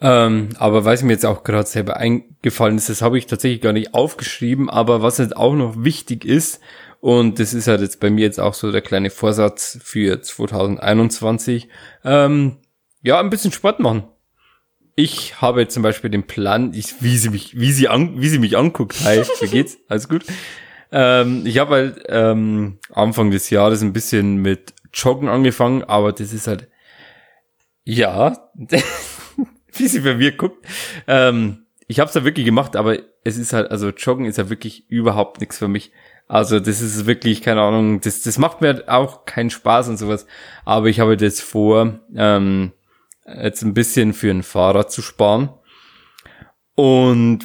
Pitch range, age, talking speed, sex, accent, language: 105-125 Hz, 20-39, 180 wpm, male, German, German